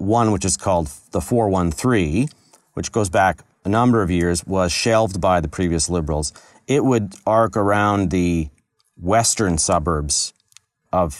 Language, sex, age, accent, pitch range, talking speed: English, male, 40-59, American, 85-105 Hz, 145 wpm